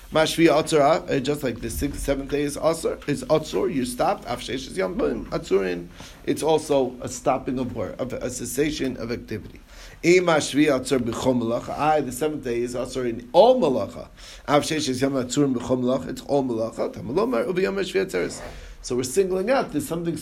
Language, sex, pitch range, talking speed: English, male, 125-165 Hz, 120 wpm